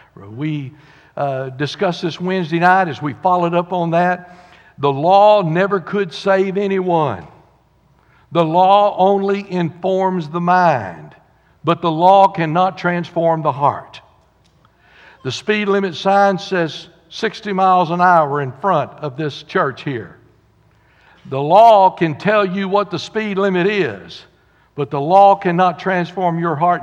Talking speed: 140 wpm